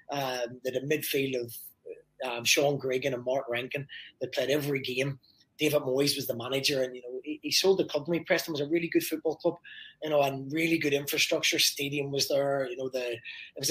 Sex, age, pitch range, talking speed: male, 20-39, 130-155 Hz, 225 wpm